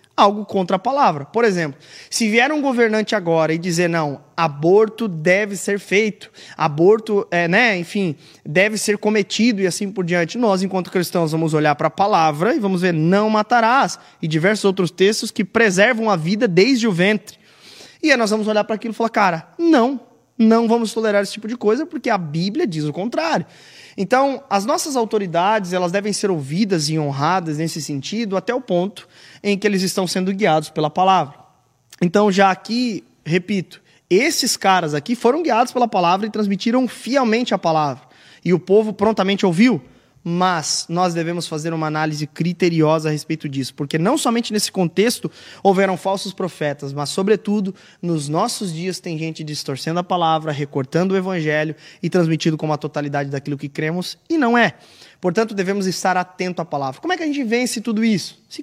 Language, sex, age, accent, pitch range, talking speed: Portuguese, male, 20-39, Brazilian, 165-220 Hz, 180 wpm